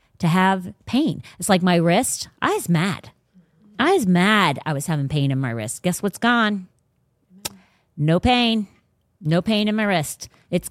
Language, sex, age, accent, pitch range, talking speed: English, female, 40-59, American, 155-205 Hz, 175 wpm